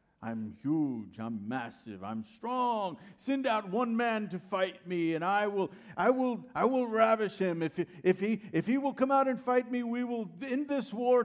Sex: male